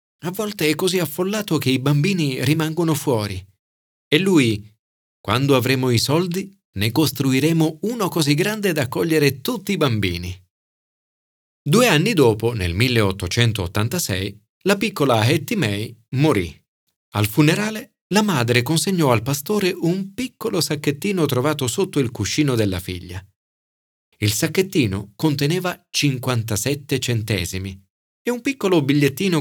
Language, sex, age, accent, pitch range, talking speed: Italian, male, 40-59, native, 100-155 Hz, 125 wpm